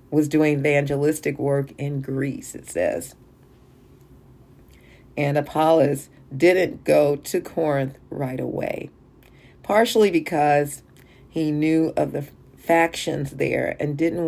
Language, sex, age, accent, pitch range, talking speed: English, female, 40-59, American, 140-165 Hz, 110 wpm